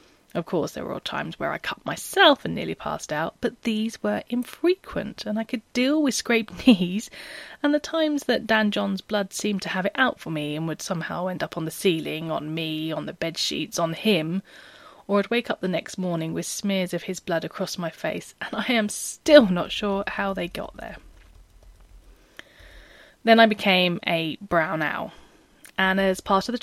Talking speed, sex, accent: 205 wpm, female, British